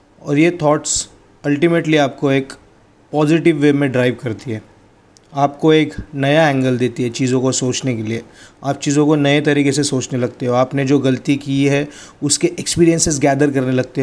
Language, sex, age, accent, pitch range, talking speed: Hindi, male, 30-49, native, 130-150 Hz, 180 wpm